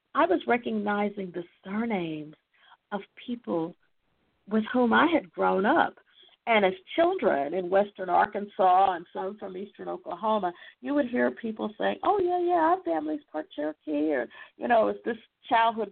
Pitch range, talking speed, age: 165-225 Hz, 160 wpm, 50-69